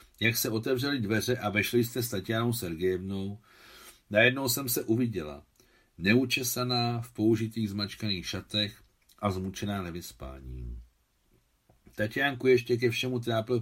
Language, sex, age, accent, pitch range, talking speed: Czech, male, 60-79, native, 95-120 Hz, 120 wpm